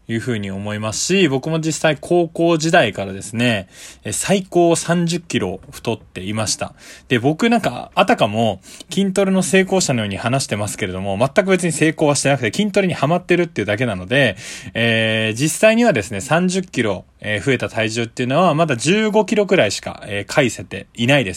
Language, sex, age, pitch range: Japanese, male, 20-39, 110-170 Hz